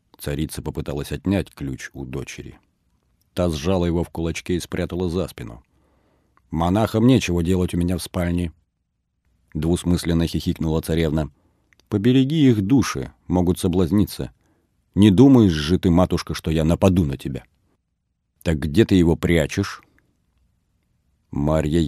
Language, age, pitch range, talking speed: Russian, 50-69, 75-95 Hz, 125 wpm